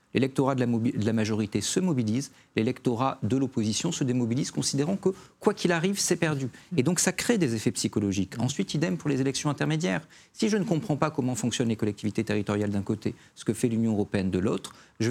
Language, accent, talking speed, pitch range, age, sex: French, French, 215 wpm, 110-145 Hz, 40-59, male